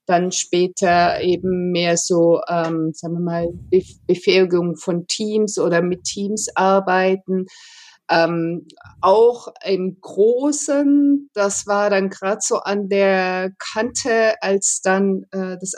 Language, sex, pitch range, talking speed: German, female, 185-220 Hz, 120 wpm